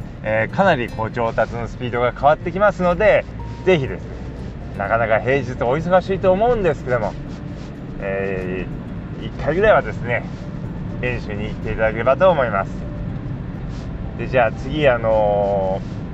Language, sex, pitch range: Japanese, male, 120-180 Hz